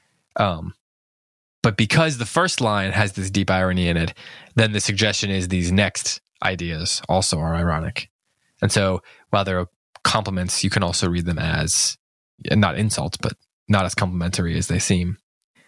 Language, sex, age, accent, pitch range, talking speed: English, male, 20-39, American, 90-110 Hz, 165 wpm